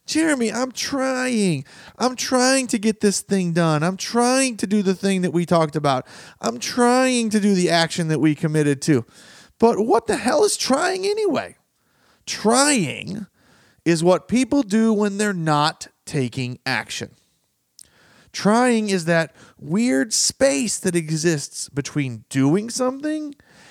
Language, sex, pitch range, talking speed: English, male, 155-235 Hz, 145 wpm